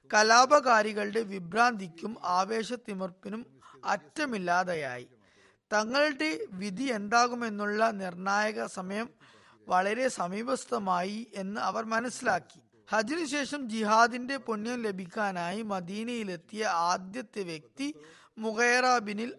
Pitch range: 195-240 Hz